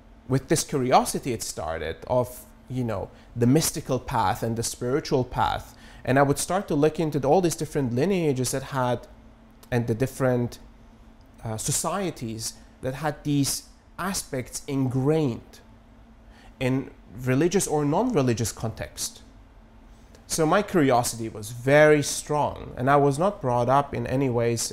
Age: 30-49